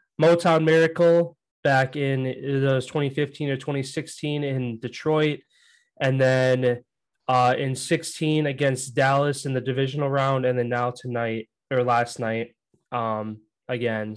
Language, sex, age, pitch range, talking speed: English, male, 20-39, 125-150 Hz, 130 wpm